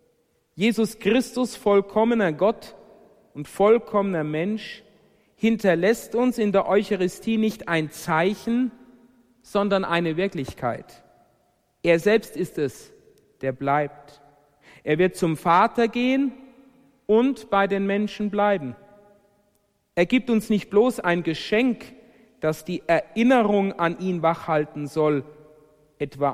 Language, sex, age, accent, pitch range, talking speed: German, male, 50-69, German, 155-215 Hz, 110 wpm